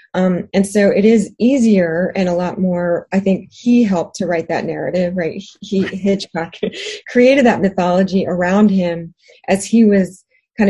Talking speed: 170 wpm